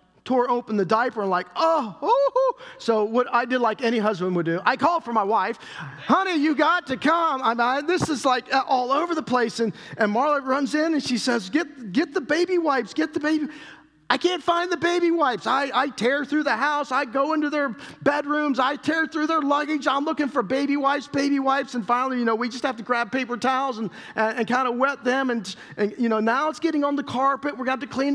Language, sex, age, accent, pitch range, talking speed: English, male, 40-59, American, 180-270 Hz, 240 wpm